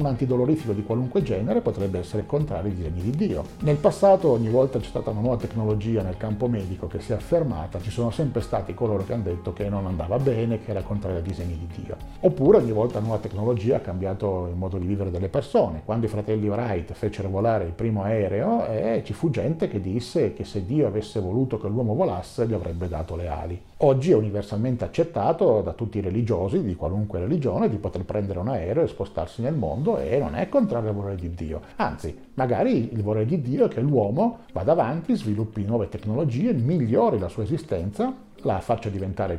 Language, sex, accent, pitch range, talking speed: Italian, male, native, 95-120 Hz, 210 wpm